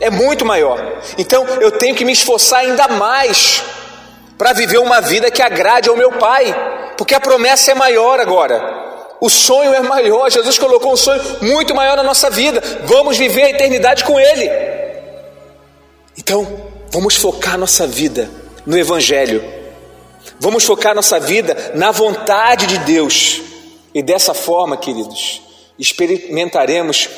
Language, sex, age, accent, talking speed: Portuguese, male, 40-59, Brazilian, 145 wpm